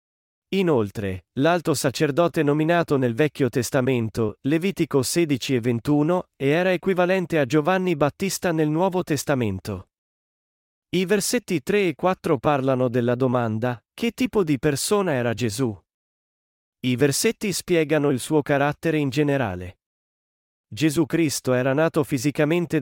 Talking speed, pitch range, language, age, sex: 125 wpm, 125-170 Hz, Italian, 40-59, male